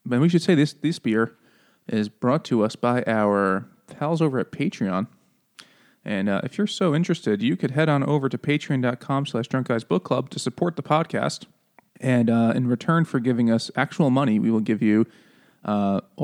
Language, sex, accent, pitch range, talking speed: English, male, American, 115-170 Hz, 190 wpm